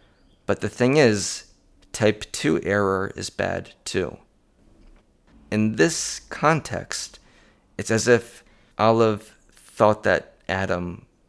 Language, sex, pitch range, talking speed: English, male, 95-110 Hz, 105 wpm